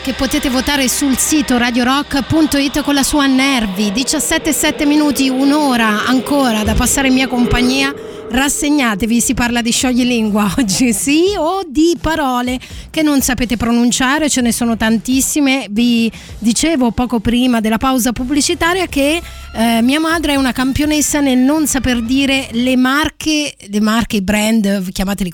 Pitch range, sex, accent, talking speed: 220-275 Hz, female, native, 145 wpm